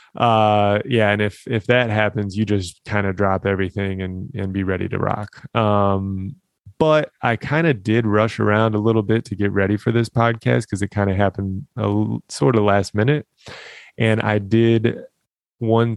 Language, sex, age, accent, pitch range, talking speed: English, male, 20-39, American, 95-115 Hz, 190 wpm